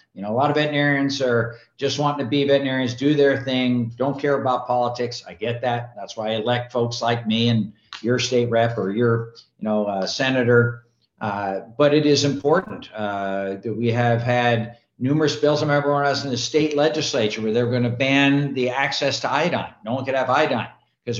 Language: English